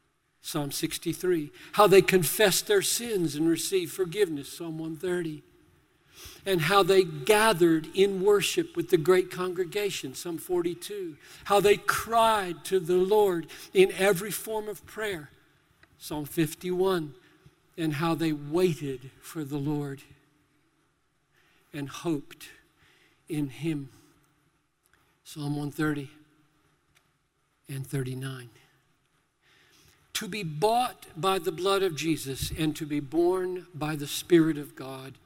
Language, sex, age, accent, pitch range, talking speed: English, male, 50-69, American, 145-185 Hz, 115 wpm